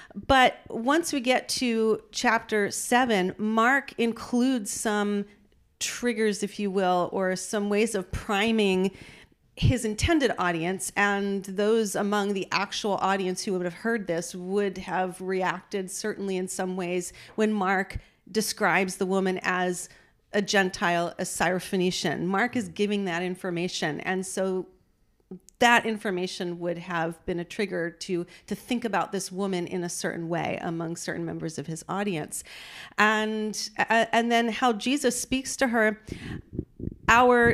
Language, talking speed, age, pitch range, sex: English, 140 wpm, 40-59, 180-215 Hz, female